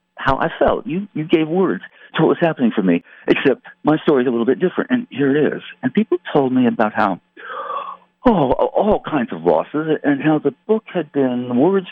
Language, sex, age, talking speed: English, male, 60-79, 220 wpm